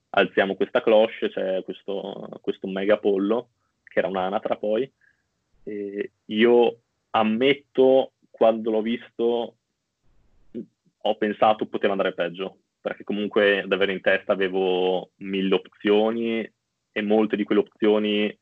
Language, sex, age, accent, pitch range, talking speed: Italian, male, 20-39, native, 100-110 Hz, 120 wpm